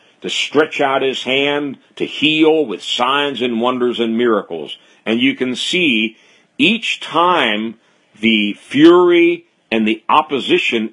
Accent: American